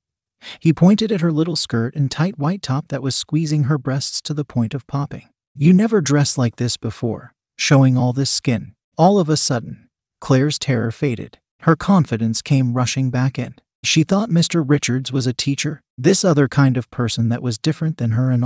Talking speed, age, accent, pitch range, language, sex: 200 wpm, 30-49, American, 125-155 Hz, English, male